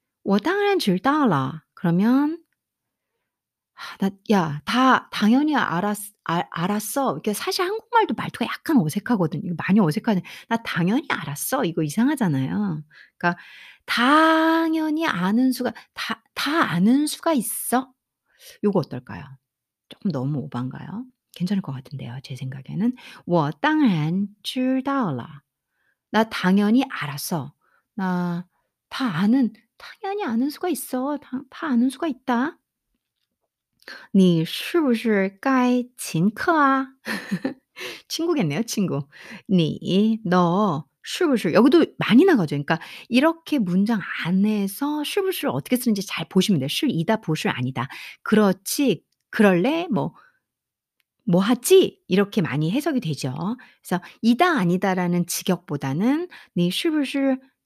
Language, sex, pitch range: Korean, female, 175-270 Hz